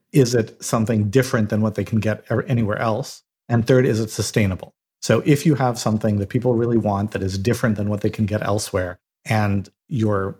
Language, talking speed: English, 210 wpm